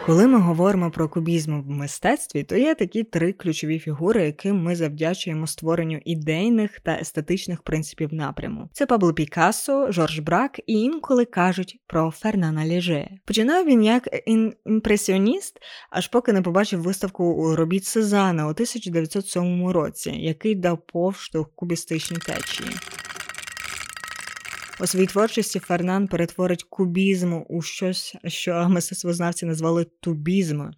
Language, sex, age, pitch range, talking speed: Ukrainian, female, 20-39, 165-200 Hz, 125 wpm